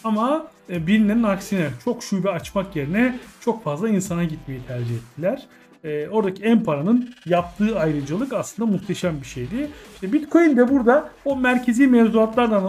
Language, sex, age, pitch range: Turkish, male, 40-59, 180-245 Hz